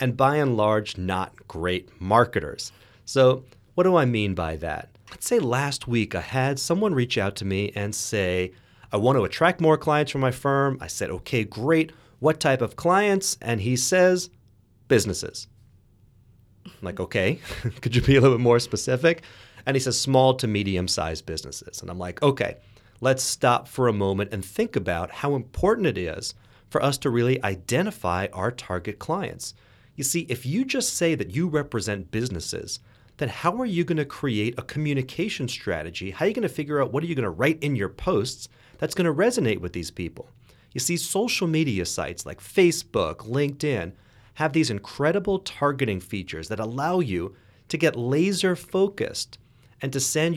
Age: 30-49